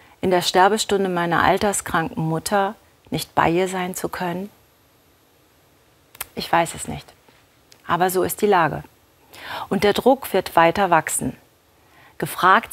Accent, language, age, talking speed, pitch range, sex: German, German, 40-59, 130 wpm, 160-200 Hz, female